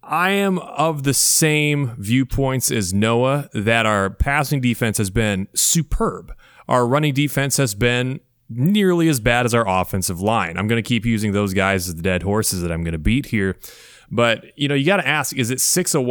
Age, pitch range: 30-49, 105-140 Hz